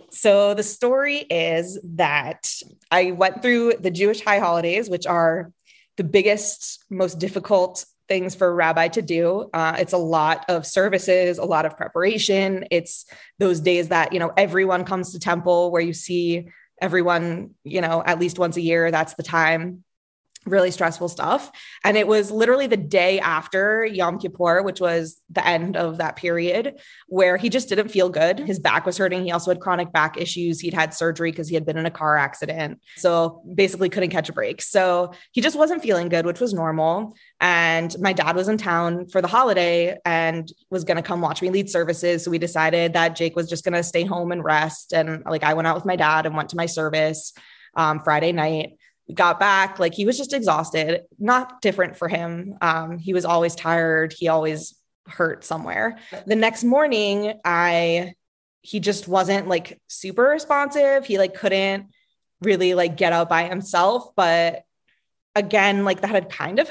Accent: American